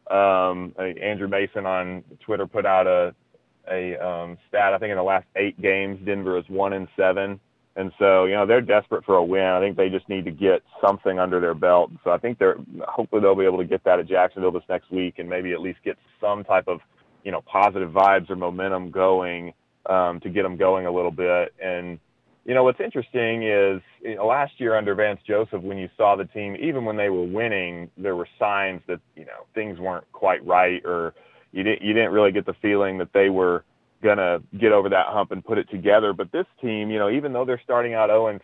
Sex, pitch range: male, 90-105 Hz